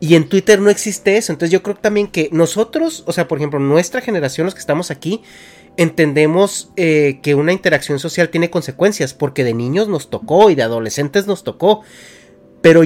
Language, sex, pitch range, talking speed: Spanish, male, 135-175 Hz, 190 wpm